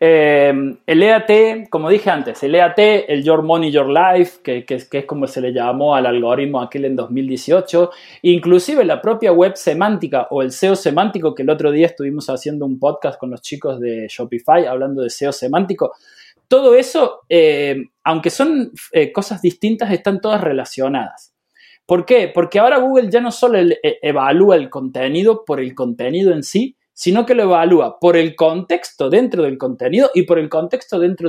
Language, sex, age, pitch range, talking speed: Spanish, male, 20-39, 145-215 Hz, 180 wpm